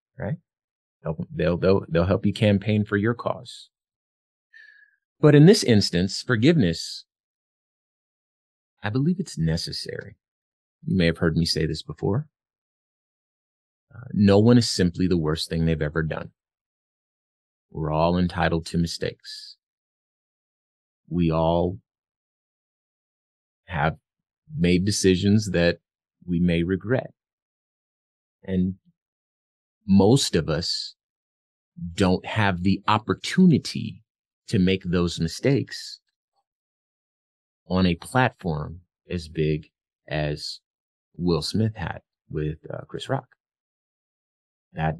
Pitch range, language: 80-105 Hz, English